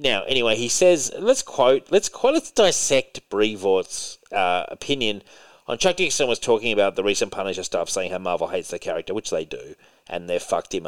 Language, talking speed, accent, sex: English, 200 wpm, Australian, male